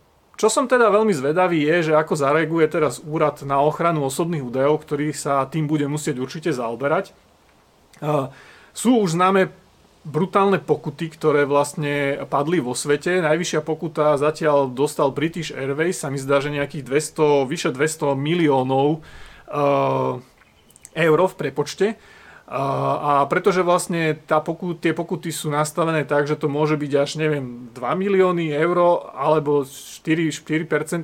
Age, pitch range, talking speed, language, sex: 30-49, 145-170 Hz, 135 wpm, Slovak, male